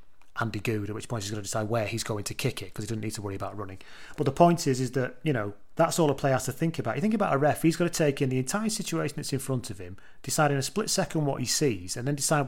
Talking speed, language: 325 wpm, English